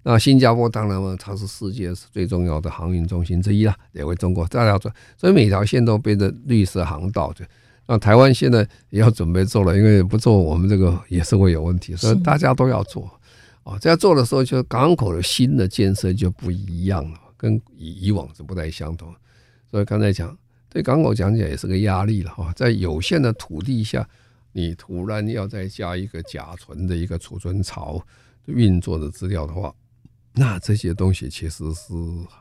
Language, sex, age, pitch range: Chinese, male, 50-69, 90-115 Hz